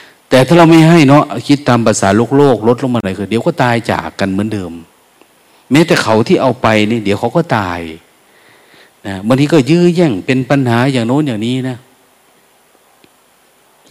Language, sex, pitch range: Thai, male, 105-140 Hz